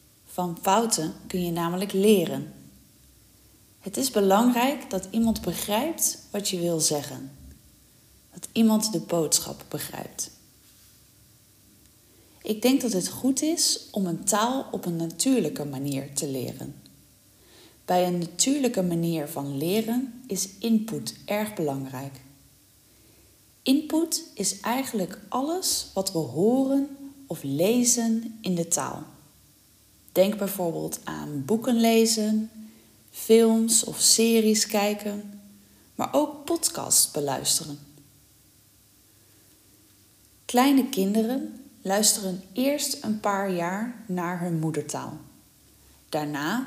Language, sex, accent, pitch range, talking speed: Dutch, female, Dutch, 145-225 Hz, 105 wpm